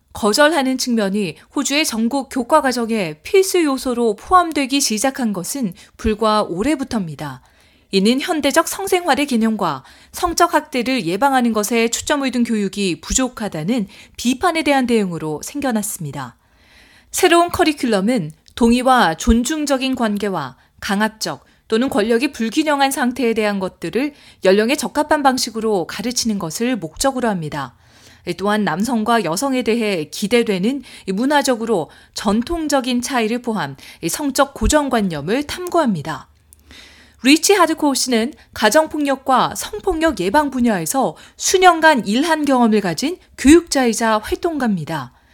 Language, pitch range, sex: Korean, 205-280 Hz, female